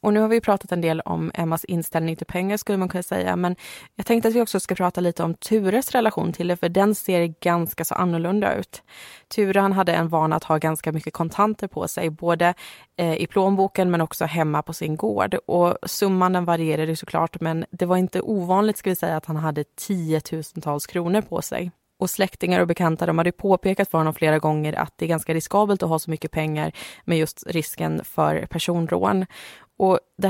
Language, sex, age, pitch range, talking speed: Swedish, female, 20-39, 160-190 Hz, 215 wpm